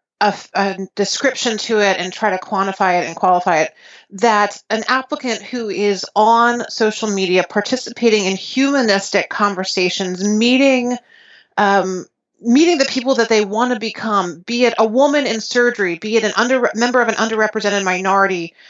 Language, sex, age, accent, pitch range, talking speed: English, female, 30-49, American, 180-230 Hz, 160 wpm